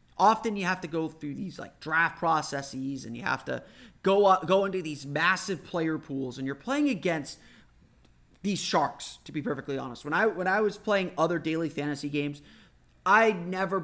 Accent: American